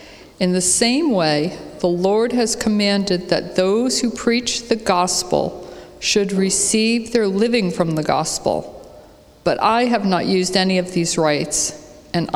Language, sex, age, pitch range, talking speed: English, female, 50-69, 175-210 Hz, 150 wpm